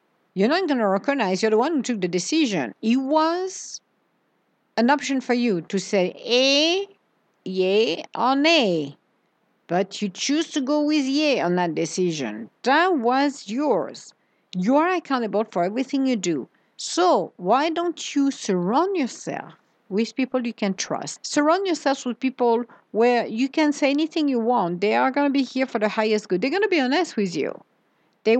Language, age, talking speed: English, 50-69, 180 wpm